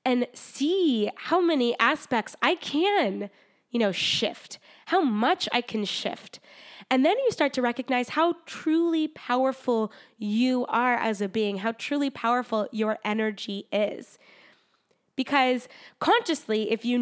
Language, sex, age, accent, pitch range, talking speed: English, female, 10-29, American, 210-255 Hz, 140 wpm